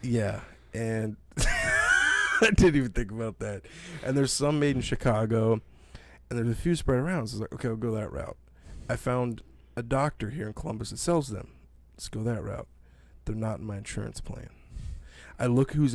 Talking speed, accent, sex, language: 190 wpm, American, male, English